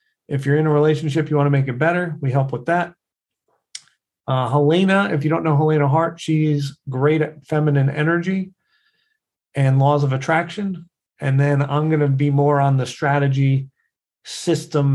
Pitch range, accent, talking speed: 135-155 Hz, American, 175 wpm